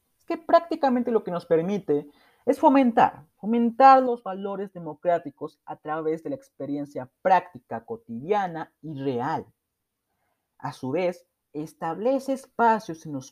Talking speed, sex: 125 wpm, male